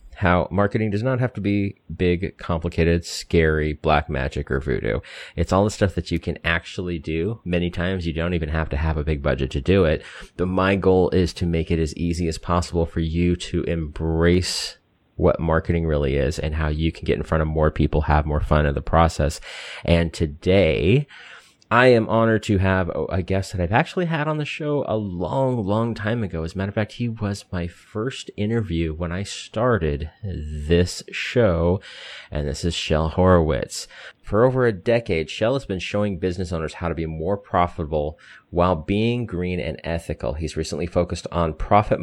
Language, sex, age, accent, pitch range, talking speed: English, male, 30-49, American, 80-100 Hz, 195 wpm